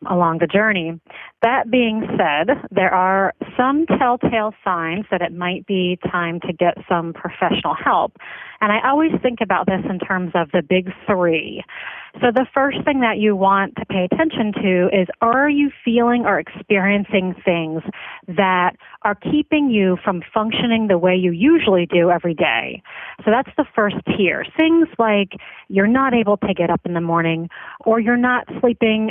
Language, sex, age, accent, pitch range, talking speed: English, female, 30-49, American, 180-230 Hz, 175 wpm